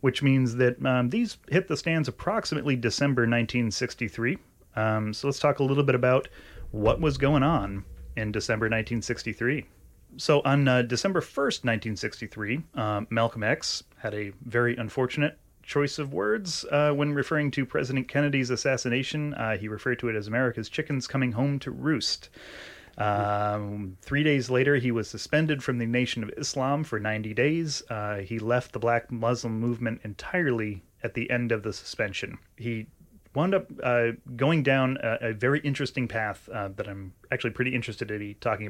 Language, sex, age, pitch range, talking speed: English, male, 30-49, 110-135 Hz, 170 wpm